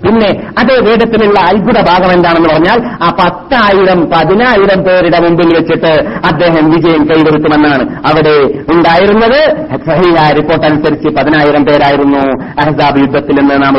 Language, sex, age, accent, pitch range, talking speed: Malayalam, female, 50-69, native, 180-240 Hz, 115 wpm